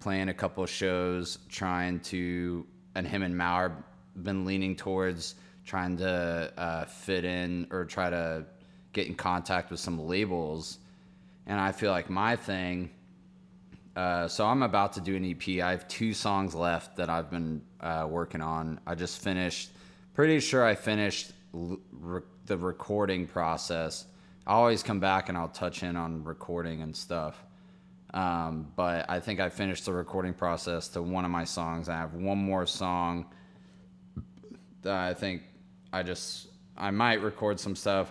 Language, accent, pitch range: English, American, 85-95 Hz